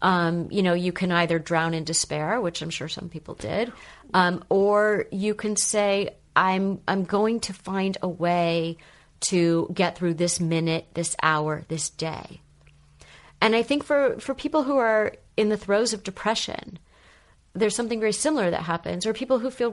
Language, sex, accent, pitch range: English, female, American, 165-210 Hz